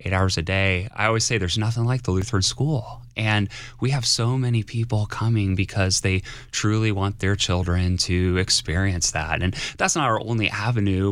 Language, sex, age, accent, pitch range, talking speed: English, male, 30-49, American, 90-120 Hz, 190 wpm